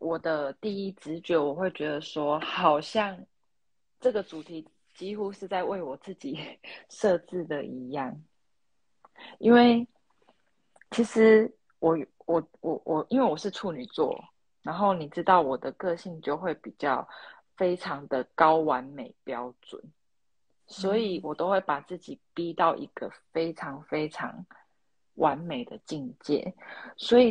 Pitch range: 160-210 Hz